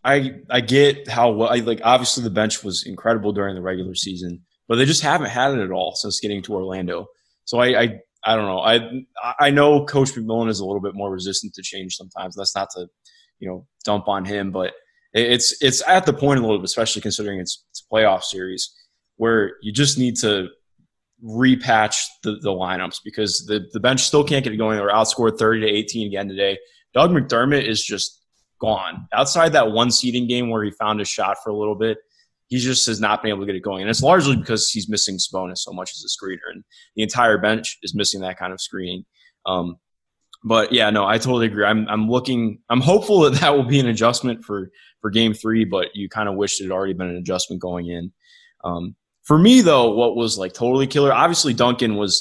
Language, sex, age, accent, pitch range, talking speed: English, male, 20-39, American, 100-130 Hz, 225 wpm